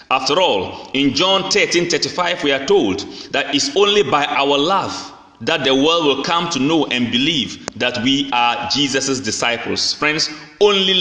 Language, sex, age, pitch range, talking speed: English, male, 30-49, 130-195 Hz, 170 wpm